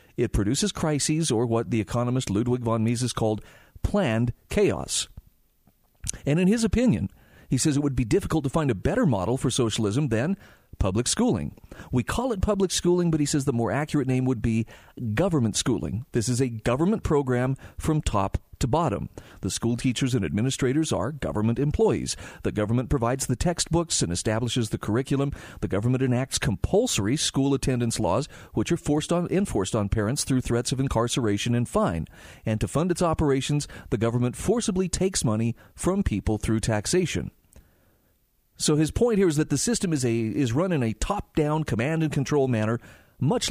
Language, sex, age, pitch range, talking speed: English, male, 40-59, 110-145 Hz, 175 wpm